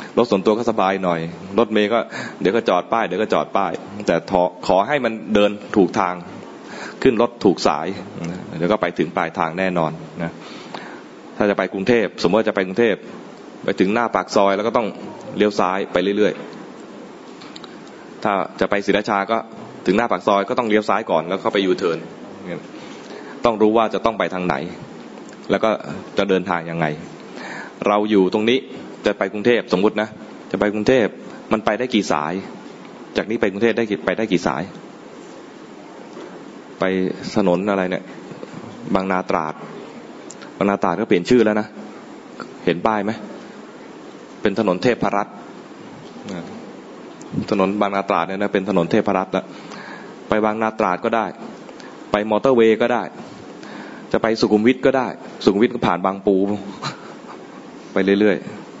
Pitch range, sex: 95-110 Hz, male